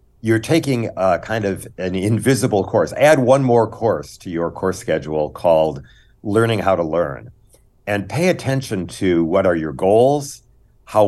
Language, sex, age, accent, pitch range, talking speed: English, male, 50-69, American, 85-115 Hz, 160 wpm